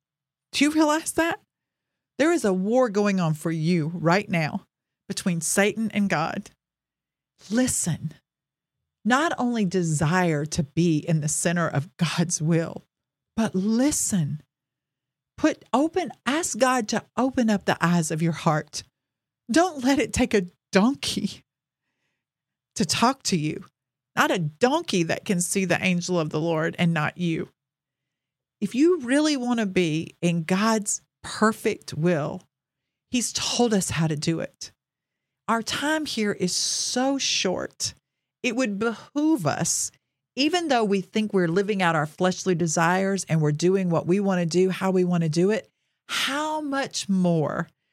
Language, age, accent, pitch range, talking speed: English, 40-59, American, 155-215 Hz, 155 wpm